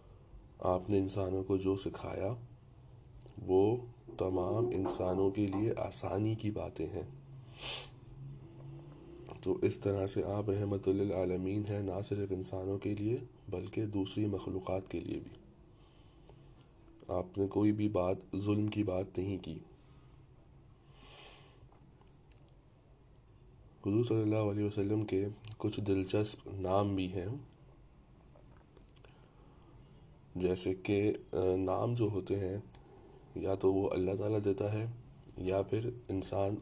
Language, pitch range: Urdu, 95-115 Hz